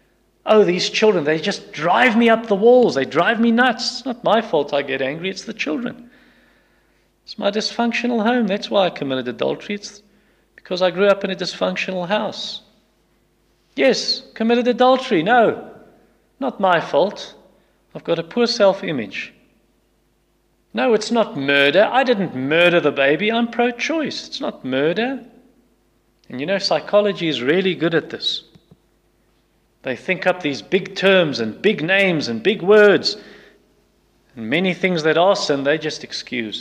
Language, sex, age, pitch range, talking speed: English, male, 40-59, 155-220 Hz, 160 wpm